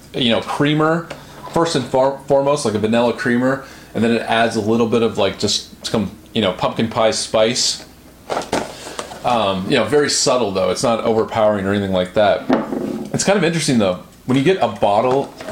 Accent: American